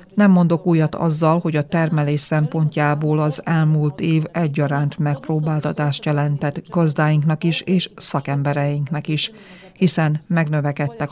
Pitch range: 145-165 Hz